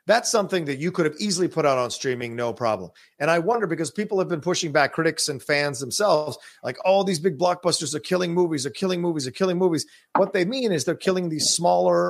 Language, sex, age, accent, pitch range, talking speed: English, male, 40-59, American, 140-185 Hz, 245 wpm